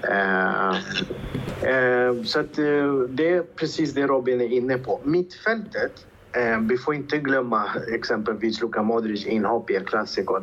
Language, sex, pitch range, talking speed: Swedish, male, 100-125 Hz, 120 wpm